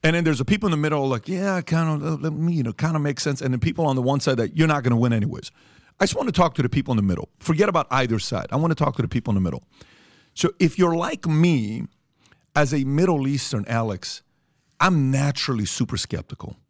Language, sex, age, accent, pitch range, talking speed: English, male, 50-69, American, 120-150 Hz, 265 wpm